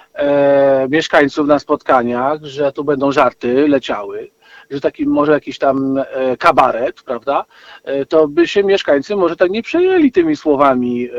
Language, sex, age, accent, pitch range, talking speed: Polish, male, 50-69, native, 145-225 Hz, 135 wpm